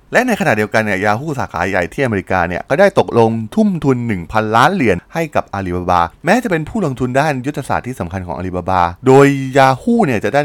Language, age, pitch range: Thai, 20-39, 95-135 Hz